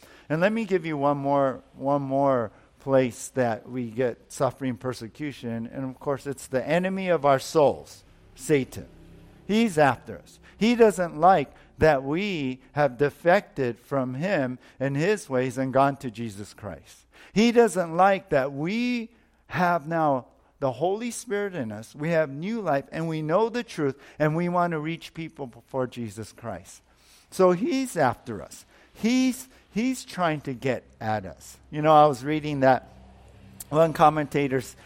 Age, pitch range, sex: 50-69, 120-160 Hz, male